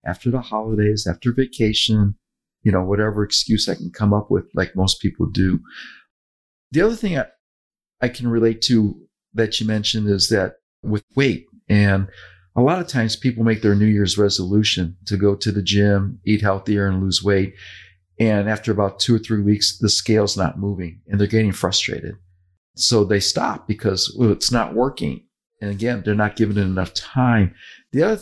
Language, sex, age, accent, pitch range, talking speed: English, male, 50-69, American, 100-120 Hz, 185 wpm